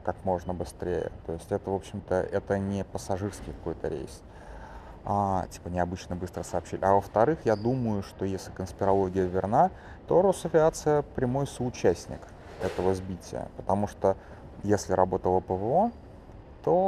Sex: male